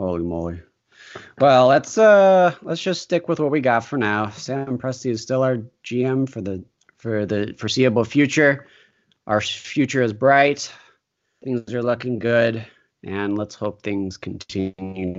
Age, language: 30-49, English